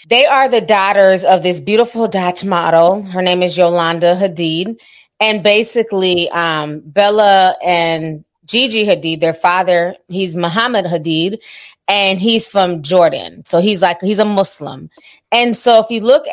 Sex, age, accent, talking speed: female, 20-39, American, 150 wpm